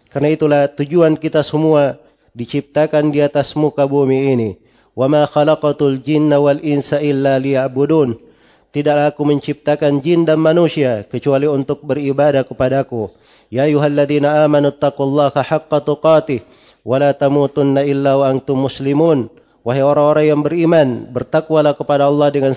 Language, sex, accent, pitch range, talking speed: Indonesian, male, native, 135-150 Hz, 125 wpm